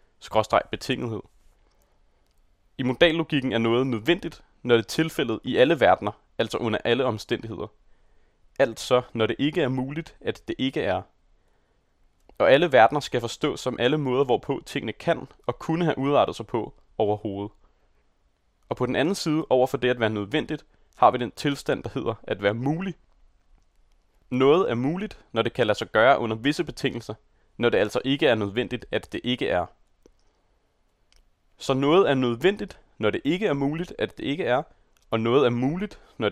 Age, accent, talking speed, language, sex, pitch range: 30-49, native, 170 wpm, Danish, male, 100-145 Hz